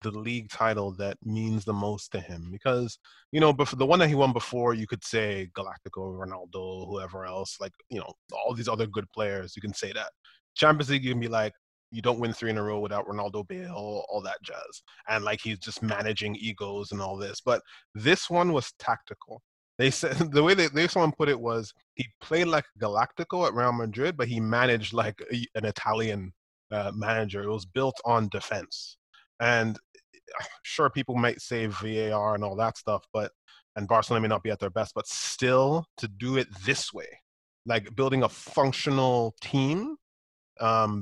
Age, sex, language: 20-39, male, English